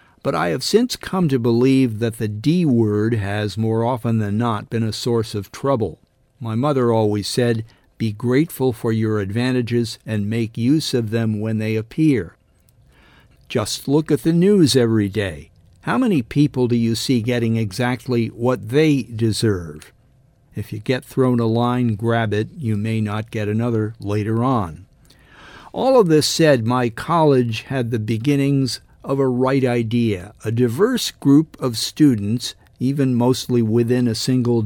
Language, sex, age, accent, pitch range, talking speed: English, male, 50-69, American, 110-130 Hz, 160 wpm